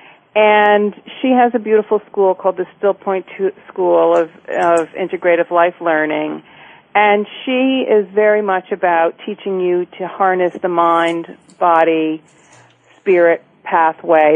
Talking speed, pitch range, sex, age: 130 wpm, 170-205 Hz, female, 40-59